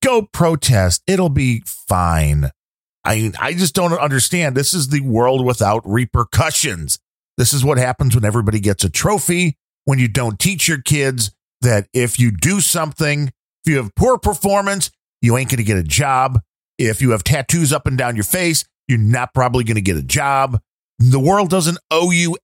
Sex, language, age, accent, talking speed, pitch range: male, English, 50-69, American, 185 wpm, 115-160 Hz